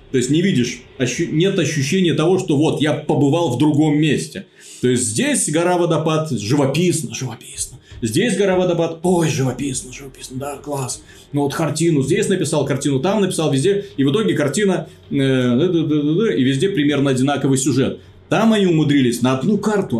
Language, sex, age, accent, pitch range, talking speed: Russian, male, 30-49, native, 125-160 Hz, 155 wpm